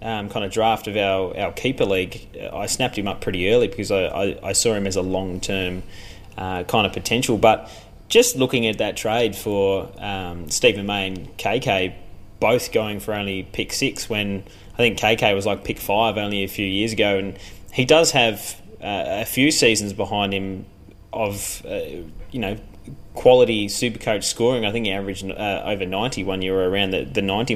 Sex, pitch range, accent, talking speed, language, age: male, 95-115 Hz, Australian, 200 wpm, English, 20-39